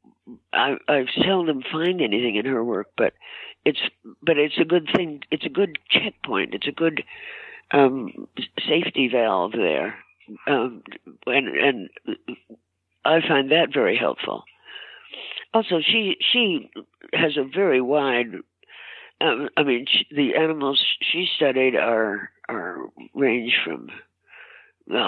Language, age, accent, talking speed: English, 60-79, American, 130 wpm